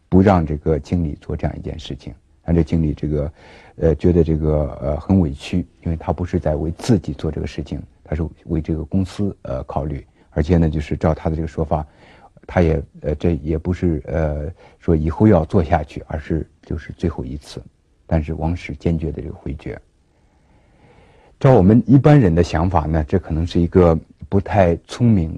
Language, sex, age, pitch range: Chinese, male, 60-79, 75-90 Hz